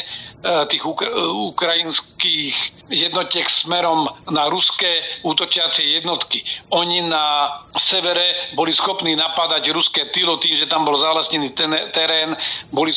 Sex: male